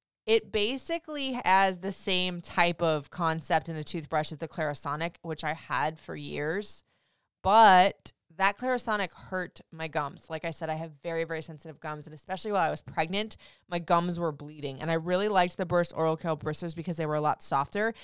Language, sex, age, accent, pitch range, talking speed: English, female, 20-39, American, 160-205 Hz, 195 wpm